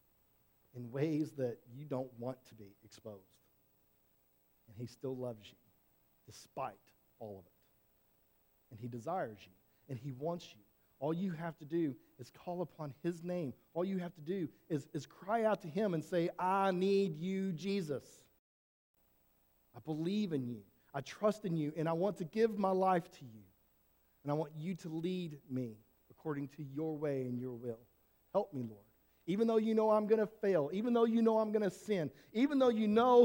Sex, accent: male, American